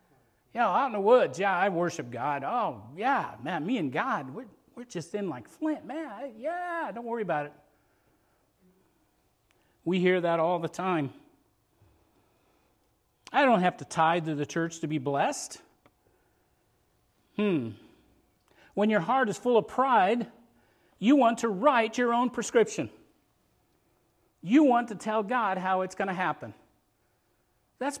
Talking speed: 150 wpm